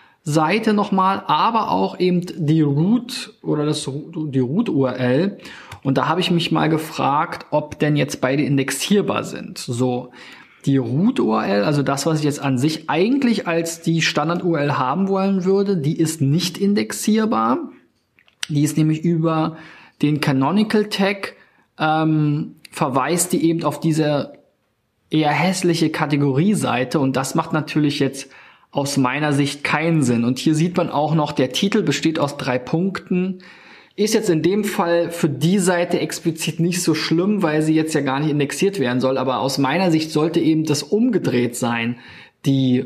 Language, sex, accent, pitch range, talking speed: German, male, German, 140-175 Hz, 165 wpm